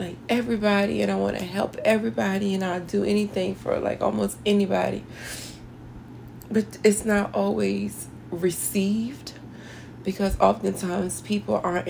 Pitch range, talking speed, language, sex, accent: 165-195 Hz, 125 wpm, English, female, American